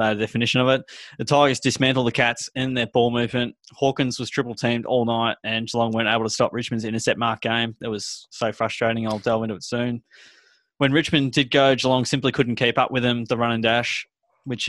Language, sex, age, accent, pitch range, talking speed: English, male, 20-39, Australian, 115-130 Hz, 220 wpm